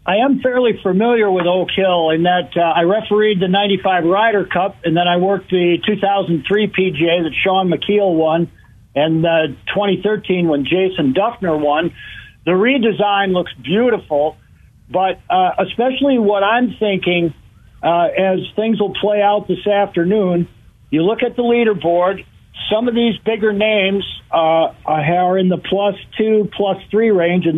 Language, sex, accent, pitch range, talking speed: English, male, American, 175-215 Hz, 155 wpm